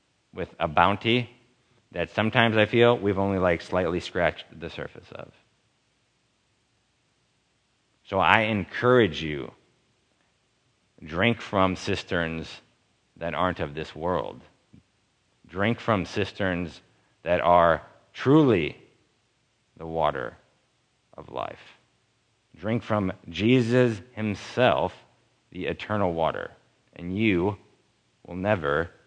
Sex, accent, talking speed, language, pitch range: male, American, 100 wpm, English, 90-115 Hz